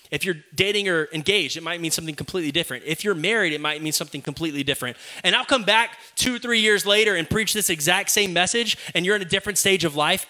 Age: 20-39